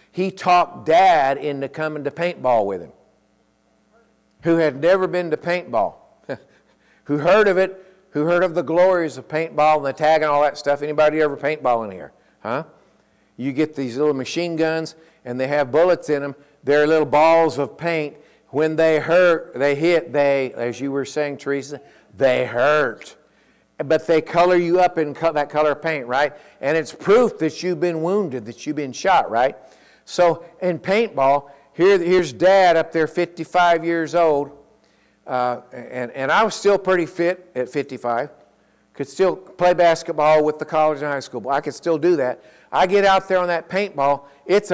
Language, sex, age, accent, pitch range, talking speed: English, male, 50-69, American, 145-180 Hz, 180 wpm